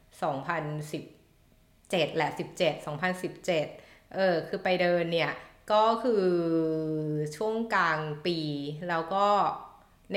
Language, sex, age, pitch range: Thai, female, 20-39, 170-210 Hz